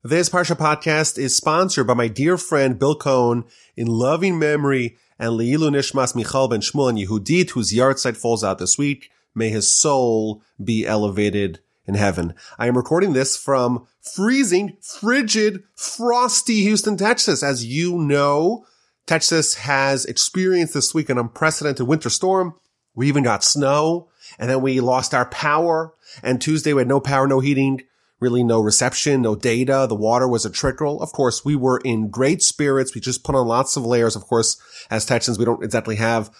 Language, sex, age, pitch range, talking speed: English, male, 30-49, 120-155 Hz, 175 wpm